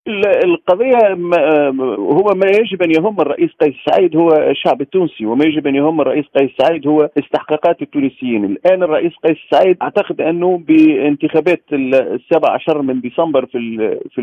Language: Arabic